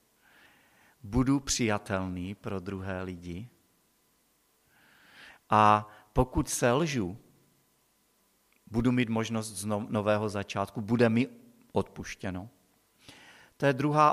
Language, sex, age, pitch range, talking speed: Czech, male, 50-69, 105-130 Hz, 90 wpm